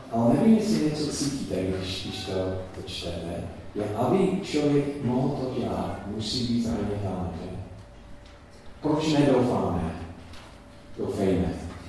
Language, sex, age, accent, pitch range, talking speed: Czech, male, 40-59, native, 95-135 Hz, 105 wpm